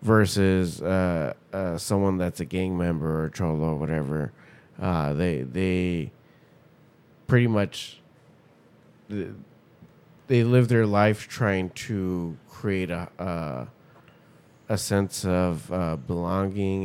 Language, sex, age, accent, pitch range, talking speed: English, male, 20-39, American, 85-105 Hz, 110 wpm